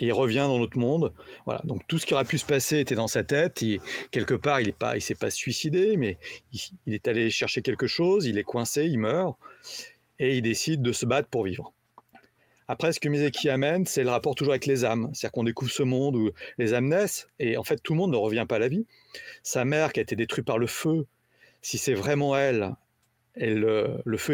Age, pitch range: 40-59, 120-160 Hz